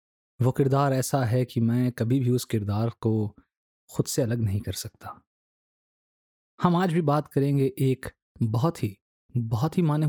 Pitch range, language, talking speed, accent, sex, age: 105-145 Hz, Hindi, 165 wpm, native, male, 30-49